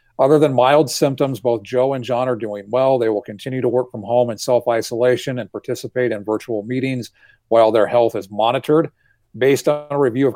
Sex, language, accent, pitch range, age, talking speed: male, English, American, 120-145 Hz, 40-59, 205 wpm